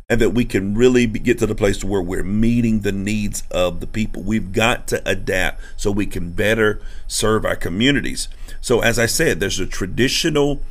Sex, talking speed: male, 195 wpm